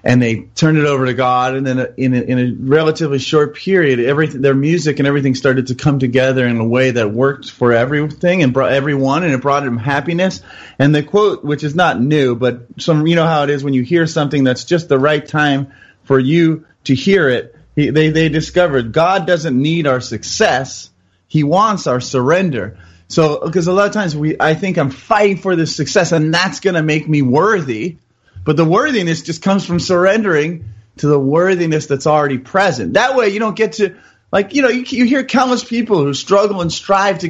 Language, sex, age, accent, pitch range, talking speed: English, male, 30-49, American, 135-180 Hz, 215 wpm